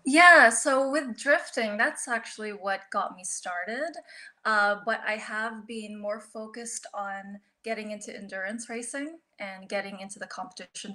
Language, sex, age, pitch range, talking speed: English, female, 20-39, 200-230 Hz, 150 wpm